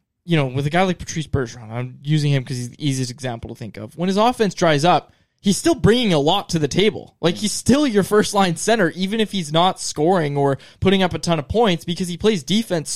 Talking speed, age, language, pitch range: 250 wpm, 20-39, English, 135-190 Hz